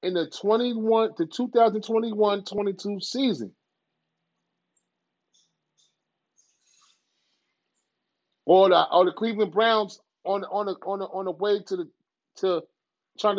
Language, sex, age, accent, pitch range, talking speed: English, male, 30-49, American, 185-245 Hz, 120 wpm